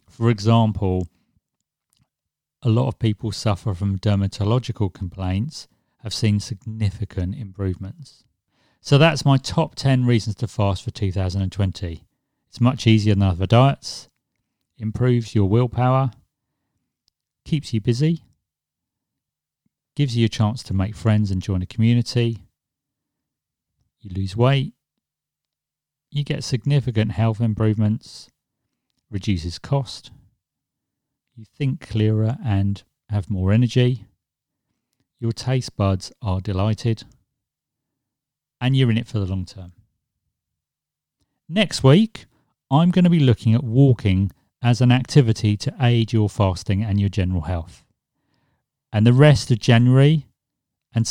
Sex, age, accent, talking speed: male, 40-59, British, 120 wpm